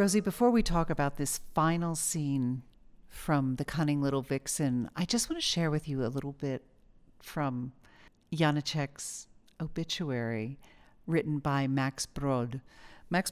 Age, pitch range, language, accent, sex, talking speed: 50-69, 125-155 Hz, English, American, female, 140 wpm